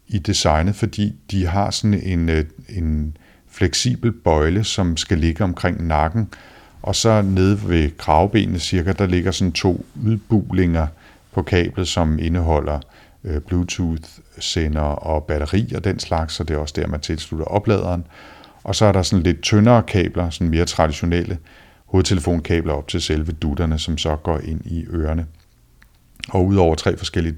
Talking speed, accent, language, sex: 155 wpm, native, Danish, male